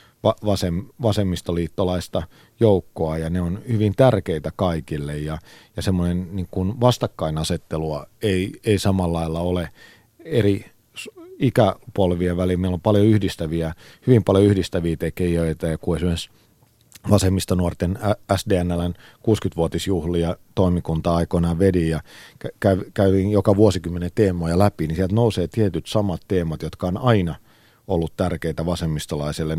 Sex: male